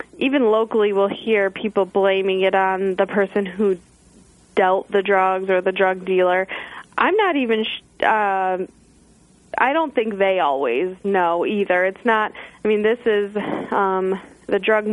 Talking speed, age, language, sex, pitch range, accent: 145 wpm, 20-39, English, female, 185-205 Hz, American